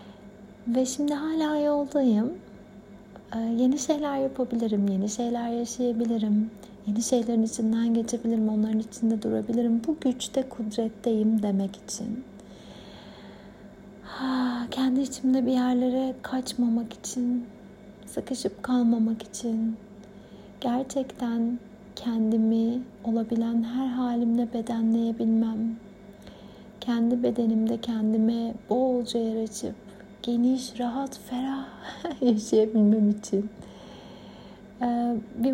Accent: native